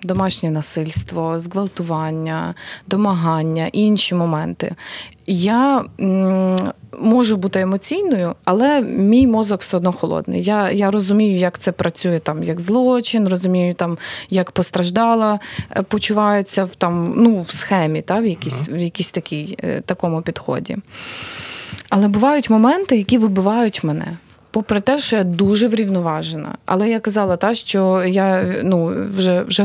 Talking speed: 120 wpm